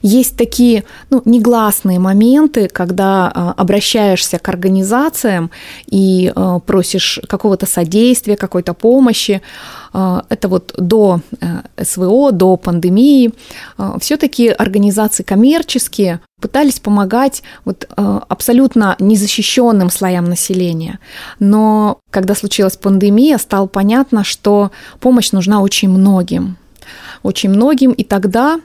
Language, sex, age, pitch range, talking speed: Russian, female, 20-39, 185-230 Hz, 95 wpm